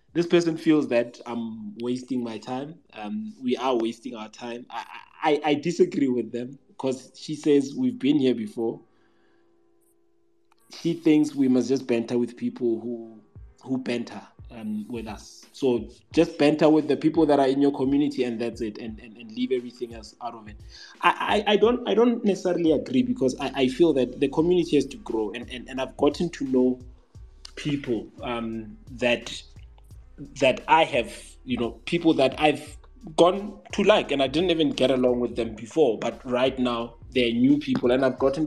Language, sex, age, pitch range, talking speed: English, male, 20-39, 120-155 Hz, 190 wpm